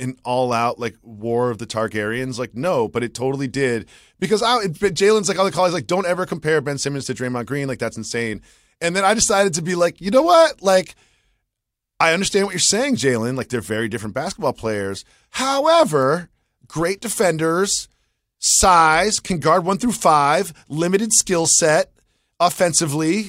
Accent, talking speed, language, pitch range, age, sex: American, 175 wpm, English, 125-185 Hz, 30-49, male